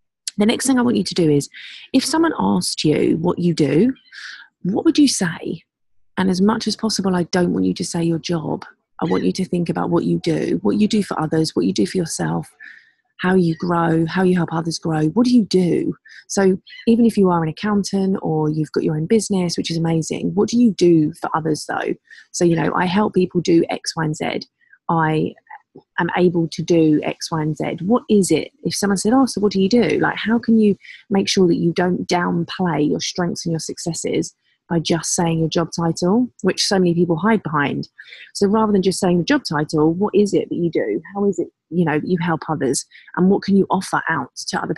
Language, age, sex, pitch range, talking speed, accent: English, 30-49, female, 165-210 Hz, 235 wpm, British